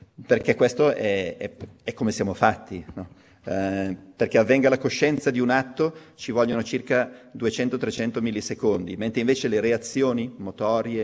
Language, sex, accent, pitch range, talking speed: Italian, male, native, 110-140 Hz, 145 wpm